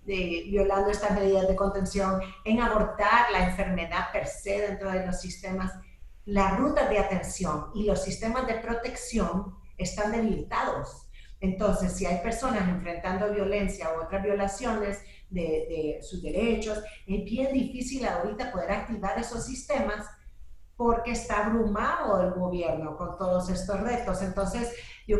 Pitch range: 180-225 Hz